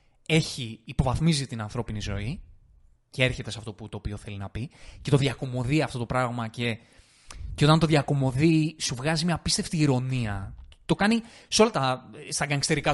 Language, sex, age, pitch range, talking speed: Greek, male, 20-39, 120-160 Hz, 170 wpm